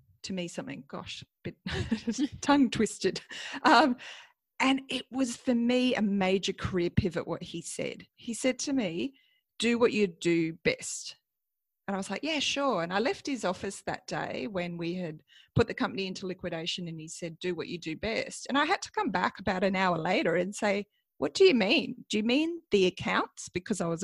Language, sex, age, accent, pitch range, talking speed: English, female, 30-49, Australian, 180-245 Hz, 205 wpm